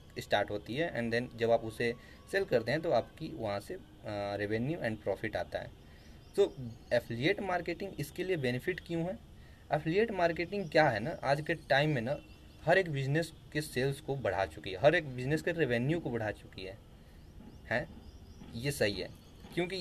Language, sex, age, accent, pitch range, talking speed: Hindi, male, 20-39, native, 110-150 Hz, 185 wpm